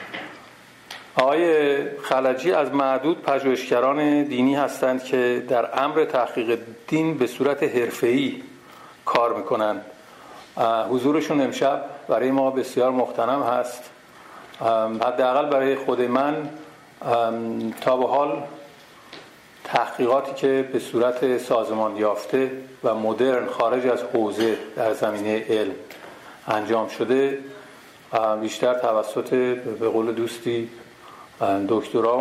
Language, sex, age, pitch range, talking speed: Persian, male, 50-69, 110-135 Hz, 100 wpm